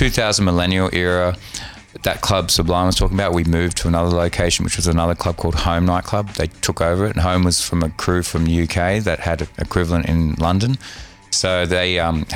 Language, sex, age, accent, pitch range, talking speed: English, male, 20-39, Australian, 80-95 Hz, 205 wpm